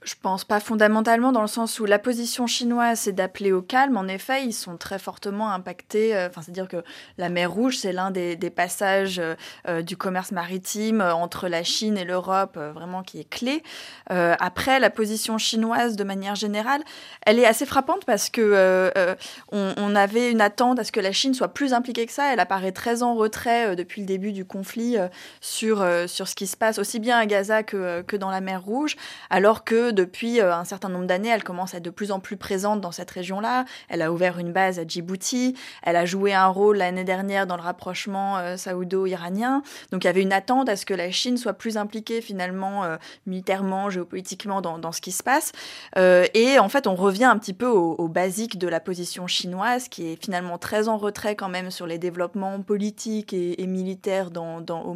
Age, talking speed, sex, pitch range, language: 20-39, 225 wpm, female, 180-230 Hz, French